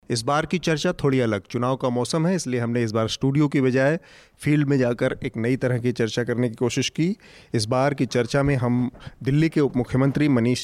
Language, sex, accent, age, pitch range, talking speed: Hindi, male, native, 30-49, 125-155 Hz, 225 wpm